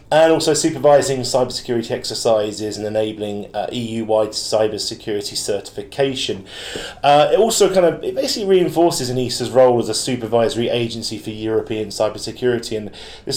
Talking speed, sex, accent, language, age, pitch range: 135 wpm, male, British, English, 30-49, 110-135 Hz